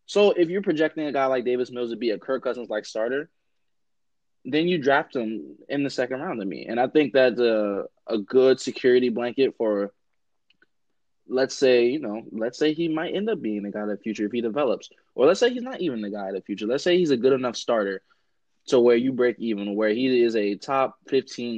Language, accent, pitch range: English, American, 110-135 Hz